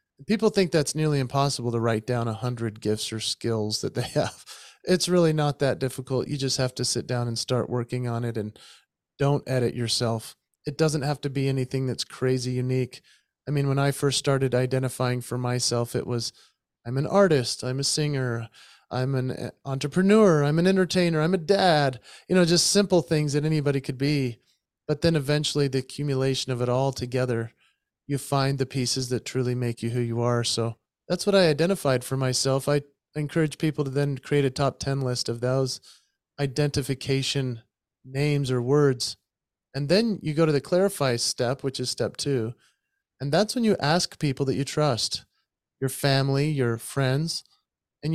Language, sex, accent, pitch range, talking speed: English, male, American, 125-150 Hz, 185 wpm